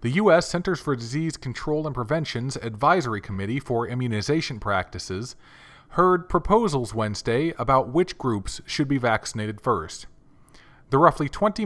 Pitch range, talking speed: 115-150 Hz, 135 wpm